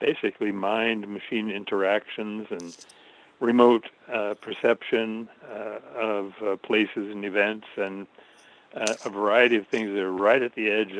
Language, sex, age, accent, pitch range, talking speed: English, male, 60-79, American, 100-110 Hz, 135 wpm